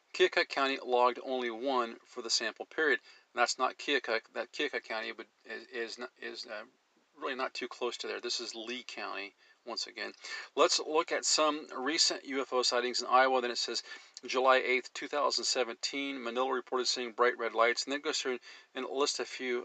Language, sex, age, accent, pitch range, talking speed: English, male, 40-59, American, 120-150 Hz, 195 wpm